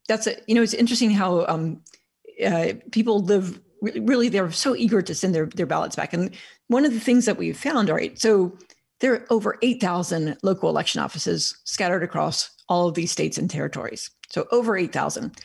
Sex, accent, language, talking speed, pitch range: female, American, English, 200 wpm, 175-225 Hz